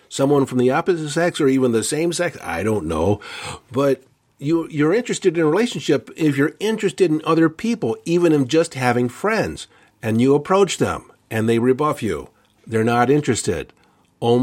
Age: 50-69